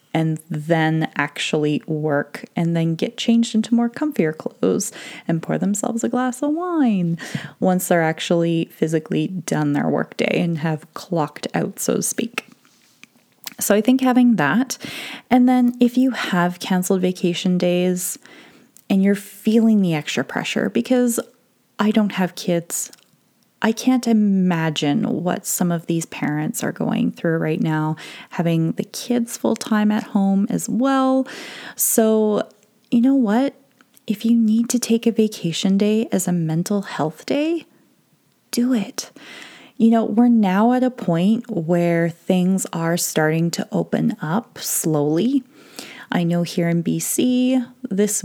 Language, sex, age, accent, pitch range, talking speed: English, female, 20-39, American, 170-240 Hz, 150 wpm